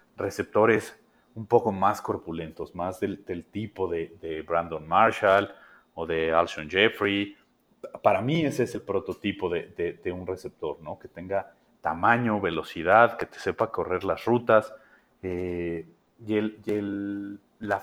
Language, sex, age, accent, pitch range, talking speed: Spanish, male, 40-59, Mexican, 85-115 Hz, 150 wpm